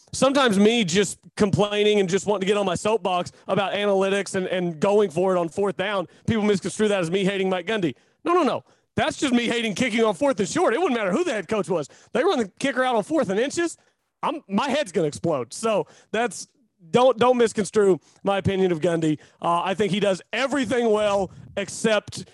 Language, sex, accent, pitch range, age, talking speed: English, male, American, 185-220 Hz, 30-49, 220 wpm